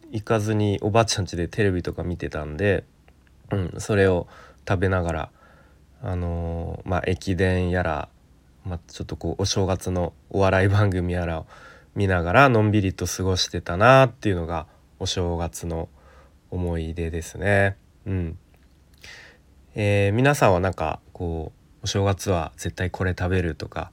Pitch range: 80-100 Hz